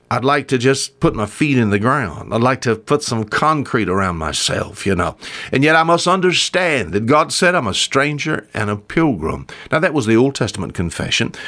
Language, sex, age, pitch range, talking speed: English, male, 60-79, 95-140 Hz, 215 wpm